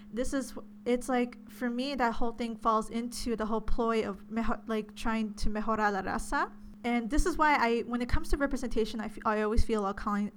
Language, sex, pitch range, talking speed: English, female, 210-240 Hz, 230 wpm